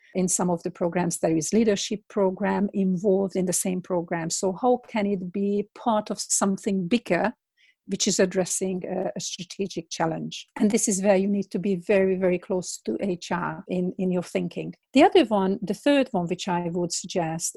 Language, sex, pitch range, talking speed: English, female, 180-205 Hz, 190 wpm